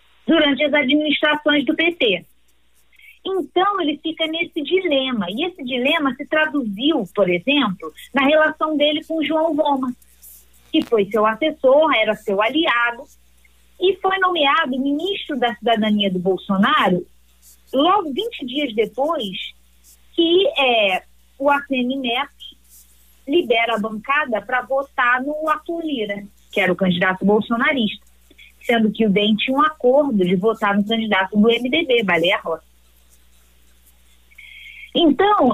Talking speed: 130 wpm